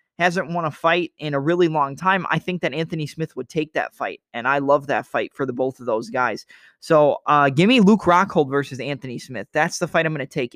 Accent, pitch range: American, 140-170 Hz